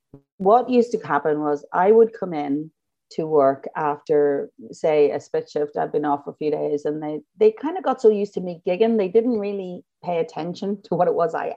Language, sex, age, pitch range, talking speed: English, female, 40-59, 150-225 Hz, 225 wpm